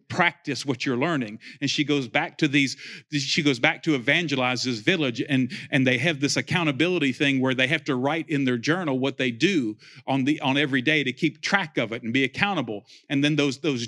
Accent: American